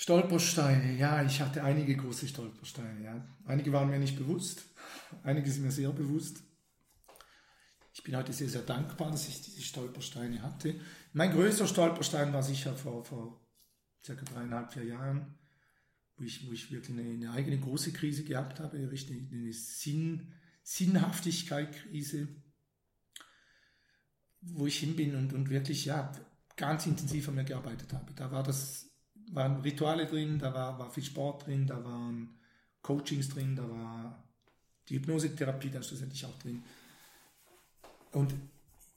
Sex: male